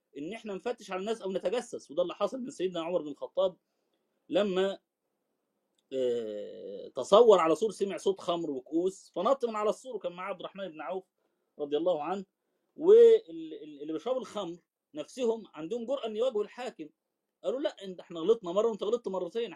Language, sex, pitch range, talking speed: Arabic, male, 185-265 Hz, 160 wpm